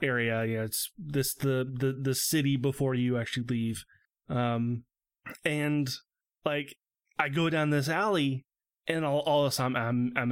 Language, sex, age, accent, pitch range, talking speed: English, male, 30-49, American, 125-165 Hz, 170 wpm